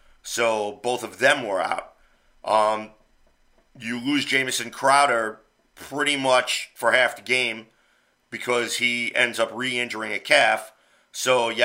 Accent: American